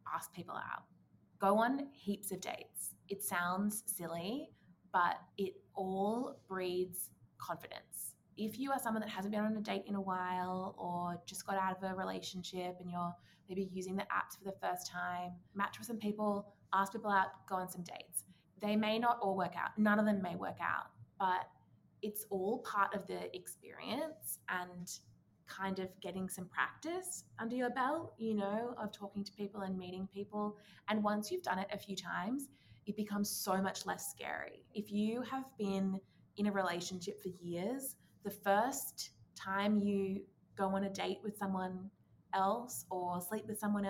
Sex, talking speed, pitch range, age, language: female, 180 wpm, 185-210 Hz, 20-39, English